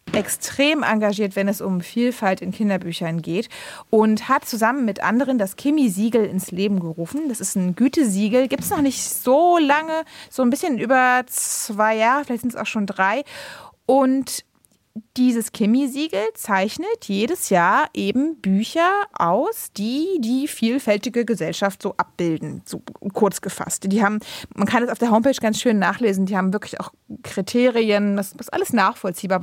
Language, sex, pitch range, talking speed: German, female, 195-250 Hz, 160 wpm